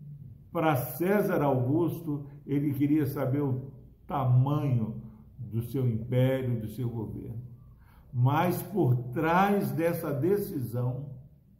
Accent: Brazilian